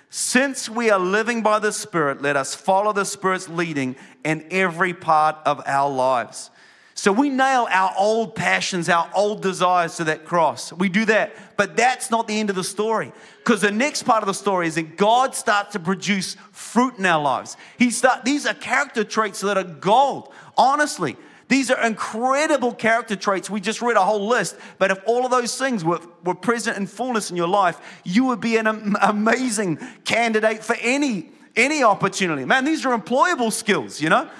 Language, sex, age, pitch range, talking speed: English, male, 30-49, 180-230 Hz, 195 wpm